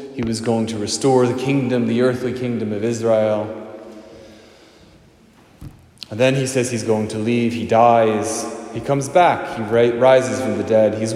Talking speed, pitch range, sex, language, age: 165 wpm, 110-135 Hz, male, English, 20-39